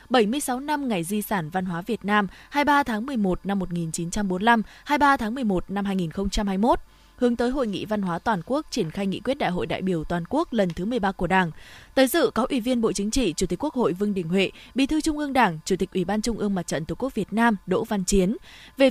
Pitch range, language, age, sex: 190-260 Hz, Vietnamese, 20-39, female